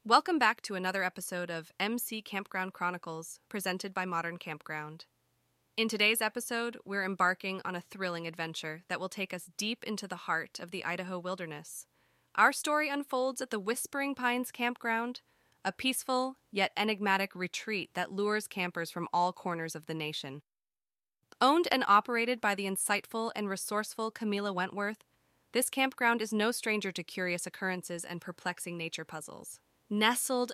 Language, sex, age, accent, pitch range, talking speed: English, female, 20-39, American, 185-230 Hz, 155 wpm